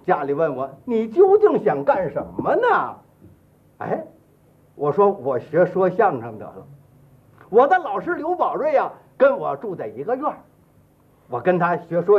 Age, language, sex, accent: 50-69, Chinese, male, native